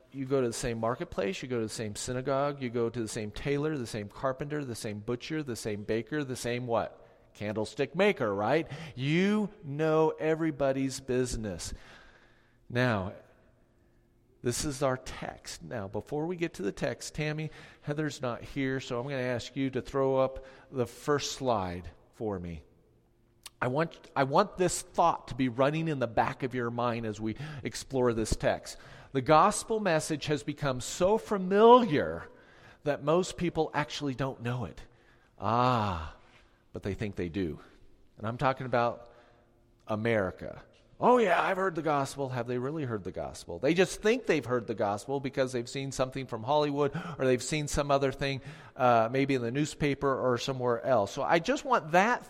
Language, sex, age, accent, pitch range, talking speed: English, male, 40-59, American, 120-150 Hz, 180 wpm